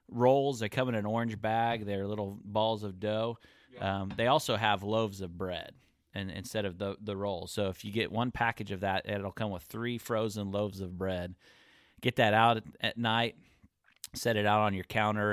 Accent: American